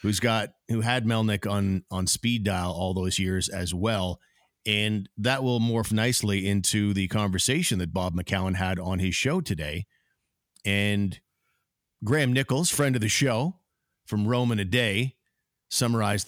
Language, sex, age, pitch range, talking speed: English, male, 50-69, 95-120 Hz, 155 wpm